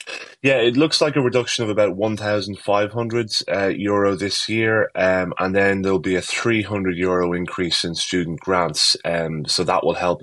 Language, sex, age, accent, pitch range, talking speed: English, male, 20-39, British, 80-90 Hz, 165 wpm